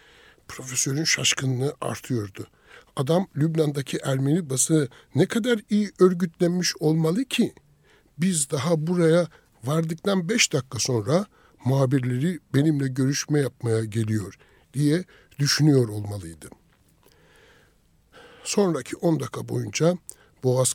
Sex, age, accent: male, 60-79, native